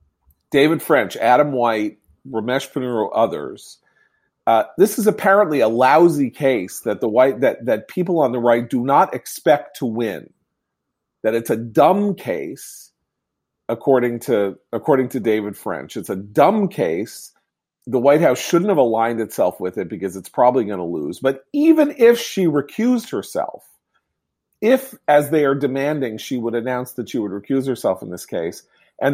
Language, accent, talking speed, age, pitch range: English, American, 165 wpm, 40-59, 115-160 Hz